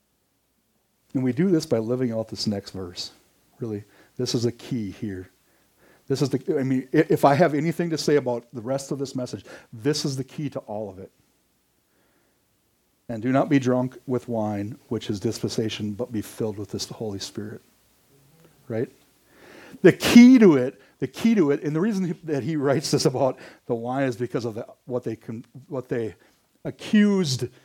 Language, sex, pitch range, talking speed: English, male, 115-155 Hz, 185 wpm